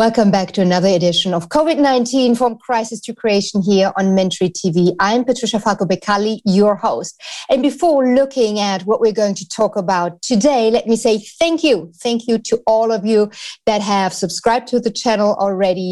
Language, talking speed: English, 185 wpm